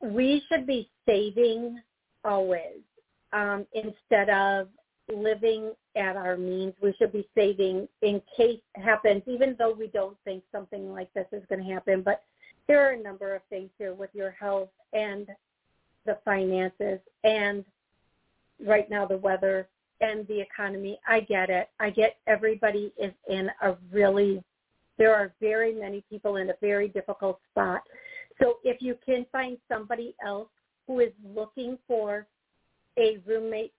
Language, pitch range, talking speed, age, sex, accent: English, 195-225 Hz, 155 wpm, 50-69, female, American